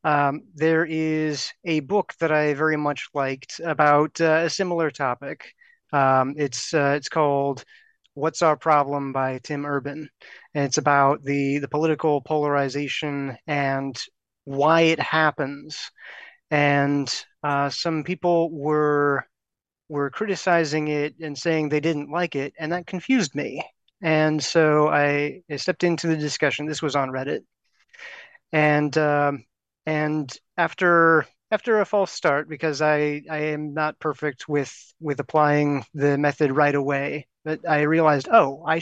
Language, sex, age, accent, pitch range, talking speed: English, male, 30-49, American, 145-160 Hz, 145 wpm